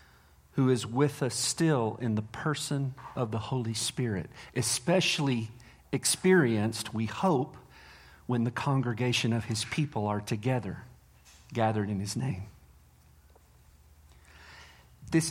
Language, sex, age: English, male, 50-69